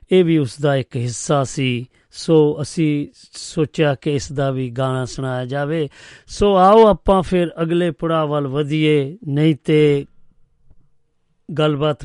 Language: Punjabi